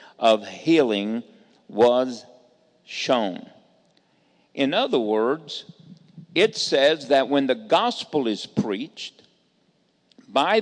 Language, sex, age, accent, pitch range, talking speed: English, male, 50-69, American, 125-210 Hz, 90 wpm